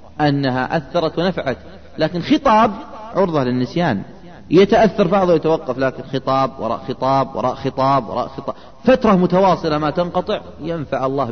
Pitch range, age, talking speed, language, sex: 135-180 Hz, 30-49, 125 wpm, Arabic, male